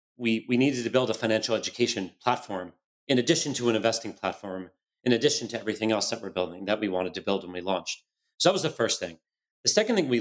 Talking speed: 240 wpm